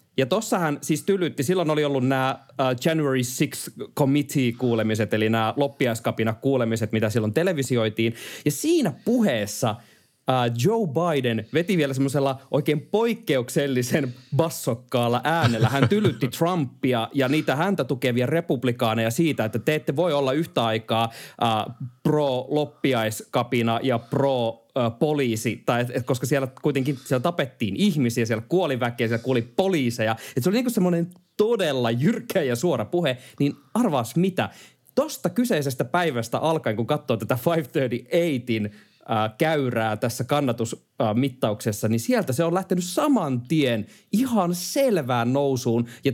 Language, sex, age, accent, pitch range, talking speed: Finnish, male, 30-49, native, 120-160 Hz, 135 wpm